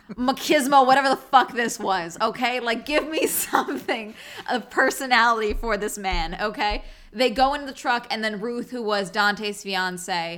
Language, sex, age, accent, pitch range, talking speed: English, female, 20-39, American, 190-250 Hz, 170 wpm